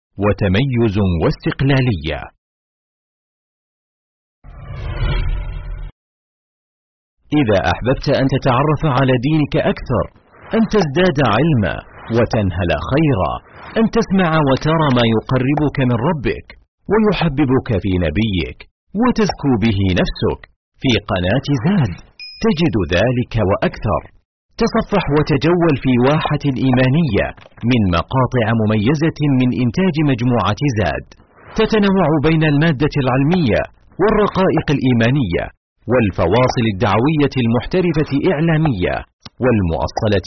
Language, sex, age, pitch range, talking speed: Arabic, male, 50-69, 105-155 Hz, 85 wpm